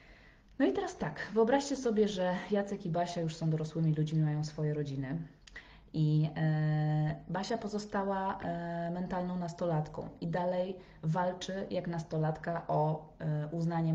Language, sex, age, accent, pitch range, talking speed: Polish, female, 20-39, native, 160-210 Hz, 125 wpm